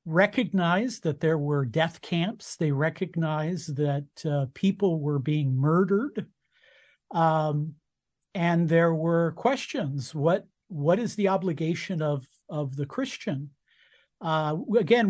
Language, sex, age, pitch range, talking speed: English, male, 50-69, 155-200 Hz, 120 wpm